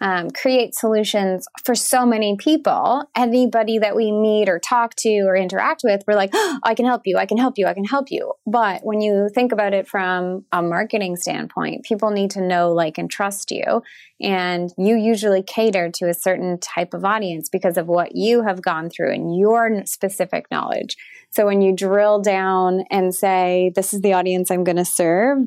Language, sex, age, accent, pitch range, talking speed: English, female, 20-39, American, 185-235 Hz, 200 wpm